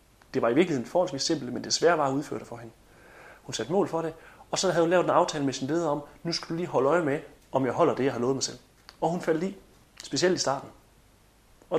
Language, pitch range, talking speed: Danish, 120-150 Hz, 280 wpm